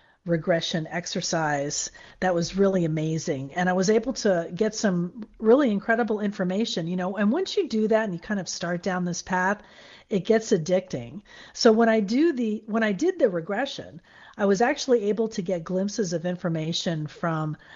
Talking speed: 180 wpm